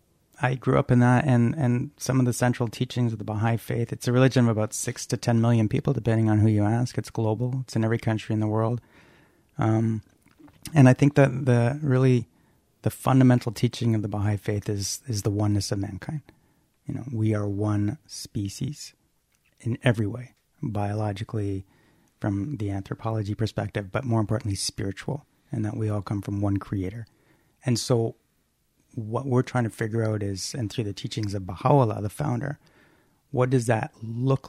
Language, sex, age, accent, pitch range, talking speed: English, male, 30-49, American, 105-125 Hz, 185 wpm